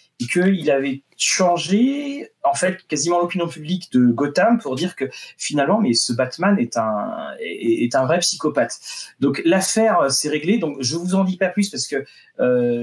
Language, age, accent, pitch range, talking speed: French, 30-49, French, 130-195 Hz, 180 wpm